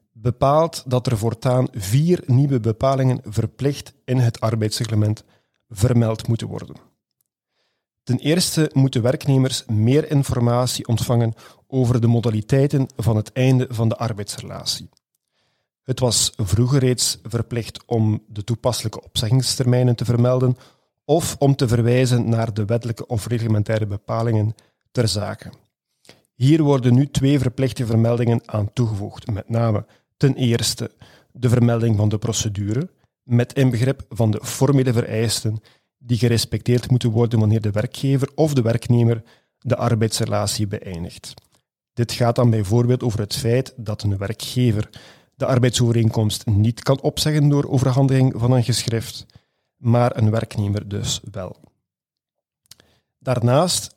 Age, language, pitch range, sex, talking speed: 40-59, Dutch, 115-130 Hz, male, 130 wpm